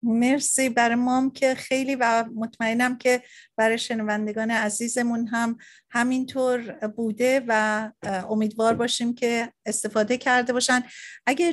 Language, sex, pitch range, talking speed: Persian, female, 225-260 Hz, 115 wpm